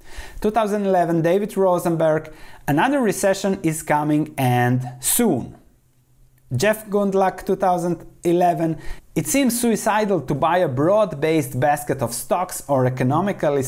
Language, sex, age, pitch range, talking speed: English, male, 30-49, 130-195 Hz, 105 wpm